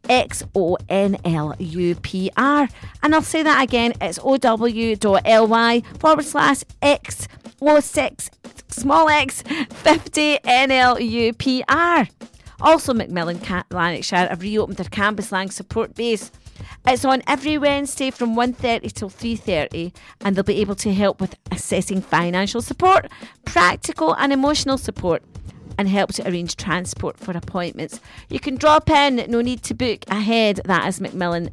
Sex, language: female, English